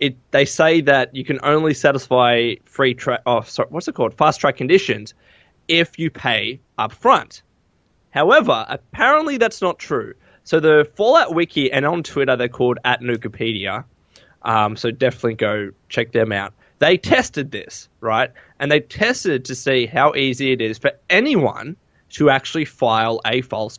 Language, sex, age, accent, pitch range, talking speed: English, male, 20-39, Australian, 115-155 Hz, 165 wpm